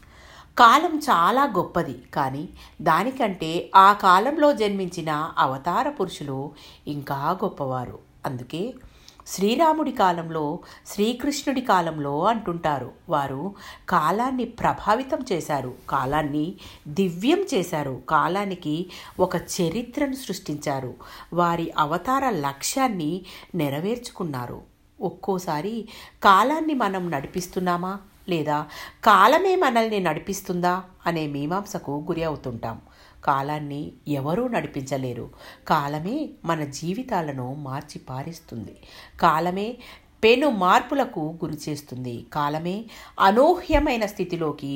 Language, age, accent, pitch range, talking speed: Telugu, 60-79, native, 150-210 Hz, 80 wpm